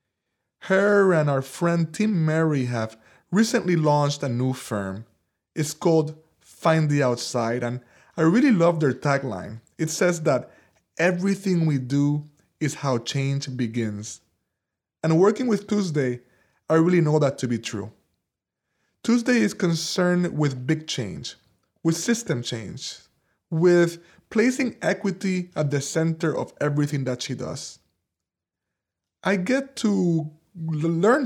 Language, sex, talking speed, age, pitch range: English, male, 130 wpm, 20-39, 130-175 Hz